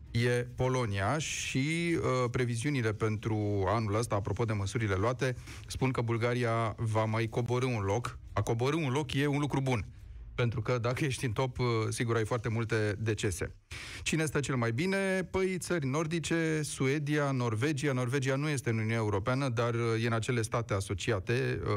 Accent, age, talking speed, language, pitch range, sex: native, 30-49, 175 wpm, Romanian, 105-130 Hz, male